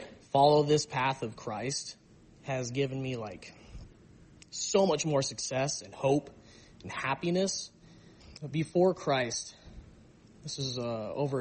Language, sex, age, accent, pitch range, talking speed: English, male, 20-39, American, 125-155 Hz, 115 wpm